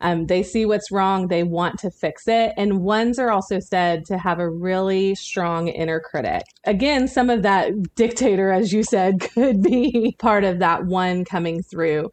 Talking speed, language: 190 wpm, English